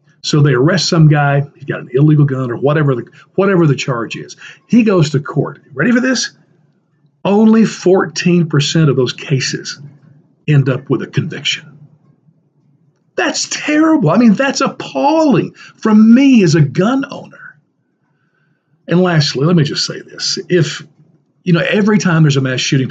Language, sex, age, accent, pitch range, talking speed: English, male, 50-69, American, 145-185 Hz, 160 wpm